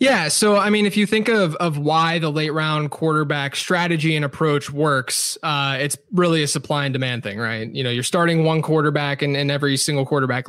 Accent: American